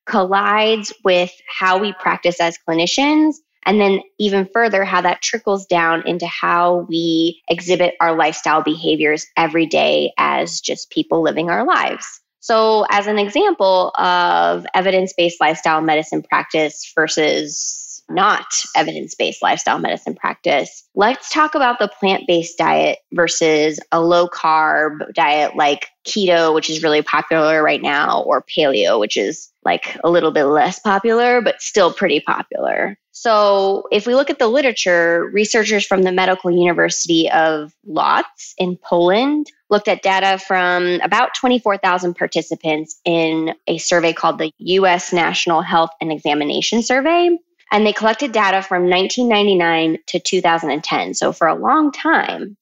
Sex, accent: female, American